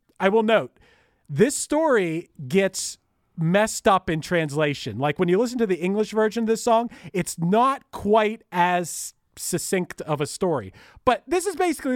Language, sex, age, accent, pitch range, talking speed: English, male, 40-59, American, 160-215 Hz, 165 wpm